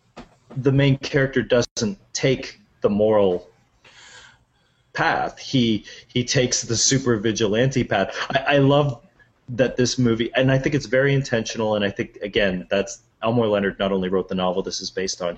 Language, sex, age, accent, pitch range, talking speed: English, male, 30-49, American, 95-125 Hz, 170 wpm